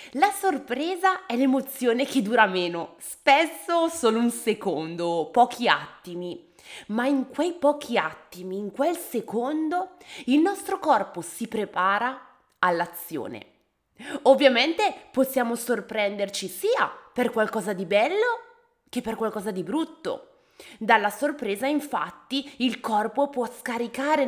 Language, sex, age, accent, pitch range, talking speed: Italian, female, 20-39, native, 200-290 Hz, 115 wpm